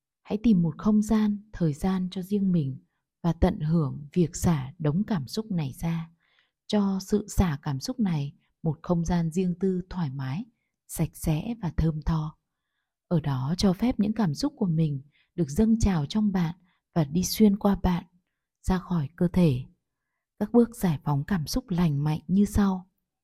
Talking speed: 185 wpm